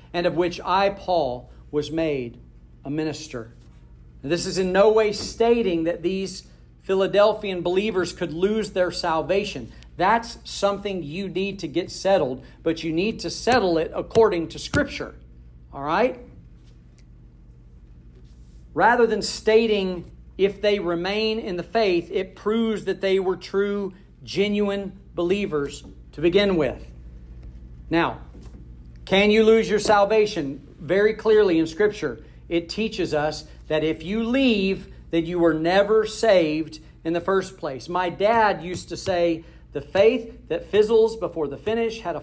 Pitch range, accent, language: 150-210 Hz, American, English